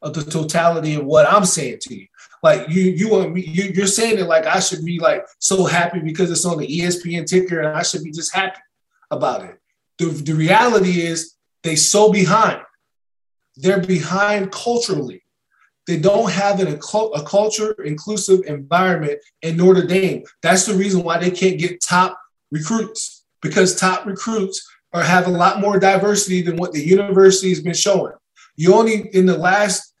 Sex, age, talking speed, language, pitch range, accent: male, 20-39, 175 wpm, English, 175-210 Hz, American